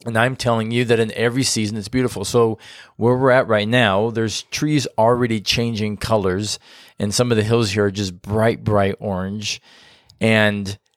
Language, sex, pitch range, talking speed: English, male, 105-125 Hz, 180 wpm